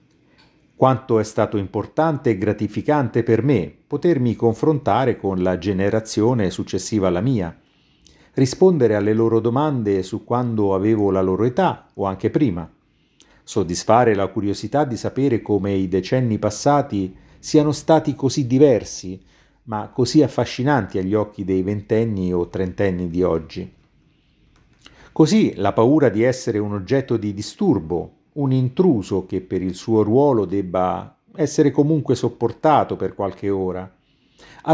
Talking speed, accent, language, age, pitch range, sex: 135 wpm, native, Italian, 50-69, 100-135 Hz, male